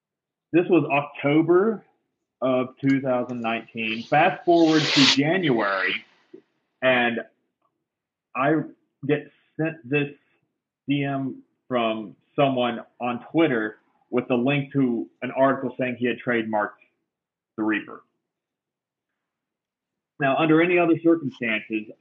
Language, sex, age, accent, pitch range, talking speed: English, male, 30-49, American, 120-155 Hz, 100 wpm